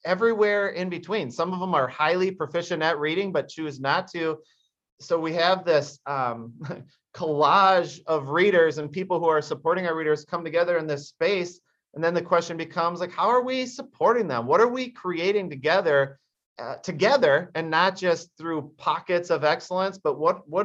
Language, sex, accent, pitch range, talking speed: English, male, American, 155-205 Hz, 185 wpm